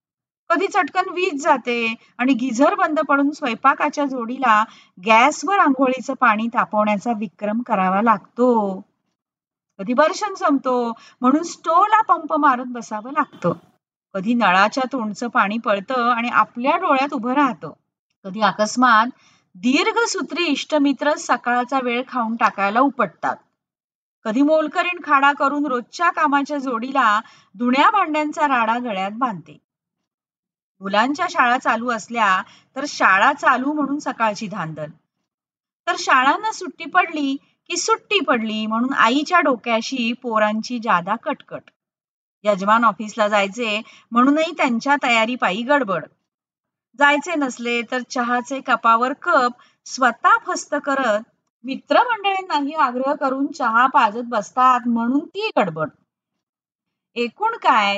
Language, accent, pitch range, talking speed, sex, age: Marathi, native, 225-295 Hz, 110 wpm, female, 30-49